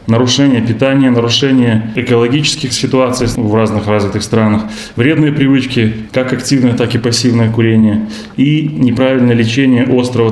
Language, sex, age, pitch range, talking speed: Russian, male, 20-39, 110-130 Hz, 120 wpm